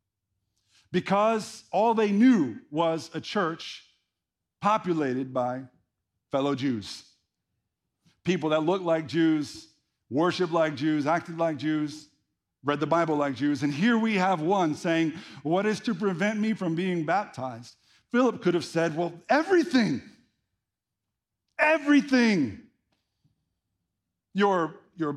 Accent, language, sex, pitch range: American, English, male, 155-220 Hz